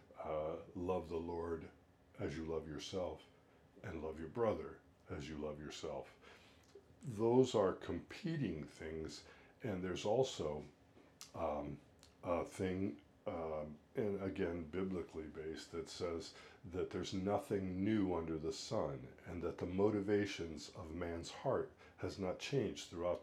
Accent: American